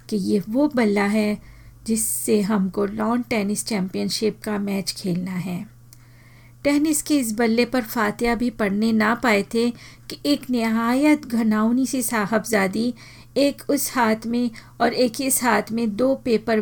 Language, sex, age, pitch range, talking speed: Hindi, female, 40-59, 205-245 Hz, 150 wpm